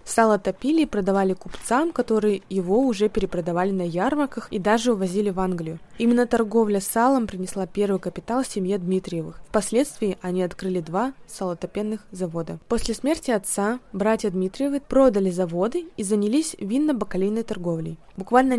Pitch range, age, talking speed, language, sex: 190-235 Hz, 20-39, 130 wpm, Russian, female